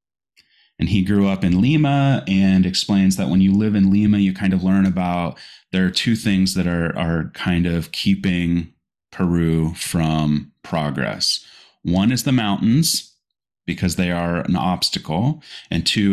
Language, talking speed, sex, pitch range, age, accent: English, 160 wpm, male, 90-105 Hz, 30-49, American